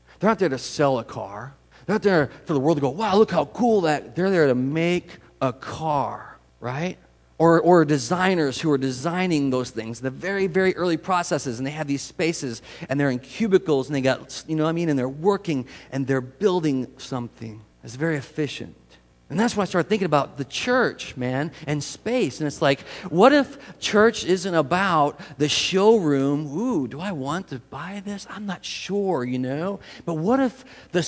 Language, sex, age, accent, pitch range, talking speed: English, male, 40-59, American, 135-185 Hz, 205 wpm